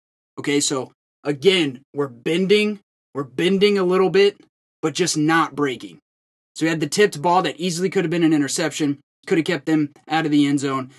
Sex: male